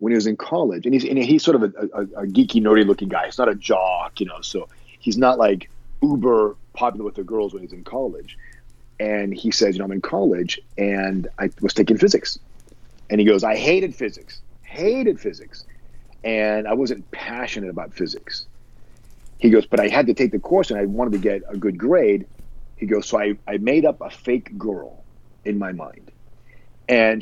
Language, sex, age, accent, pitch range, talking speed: English, male, 40-59, American, 105-130 Hz, 210 wpm